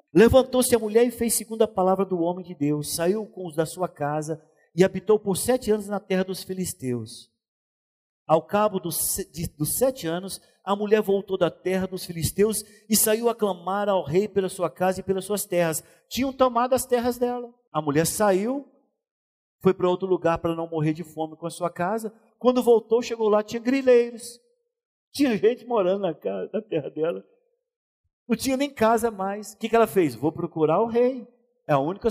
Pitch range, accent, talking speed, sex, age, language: 175-255 Hz, Brazilian, 190 wpm, male, 50-69, Portuguese